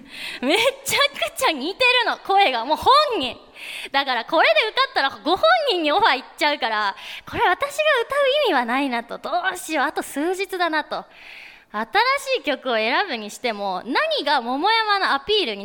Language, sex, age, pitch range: Japanese, female, 20-39, 230-360 Hz